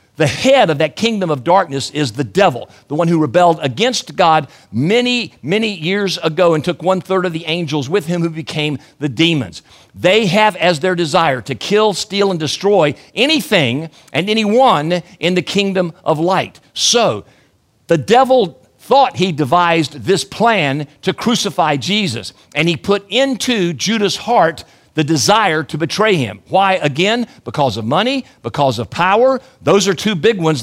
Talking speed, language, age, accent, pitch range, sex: 165 wpm, English, 50-69, American, 150-205 Hz, male